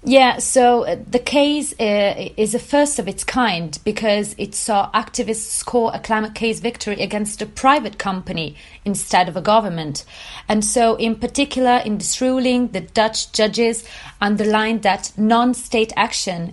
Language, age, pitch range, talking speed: English, 30-49, 180-220 Hz, 150 wpm